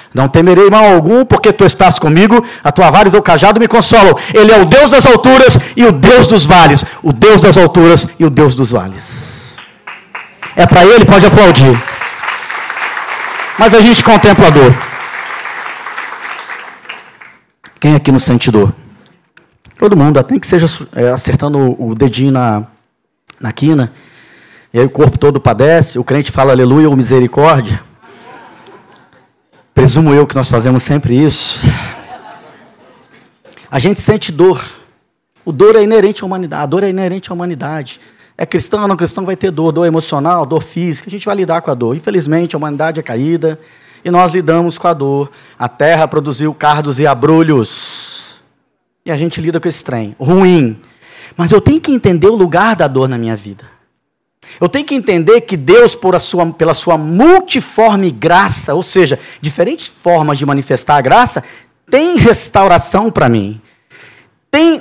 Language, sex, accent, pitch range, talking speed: Portuguese, male, Brazilian, 135-195 Hz, 165 wpm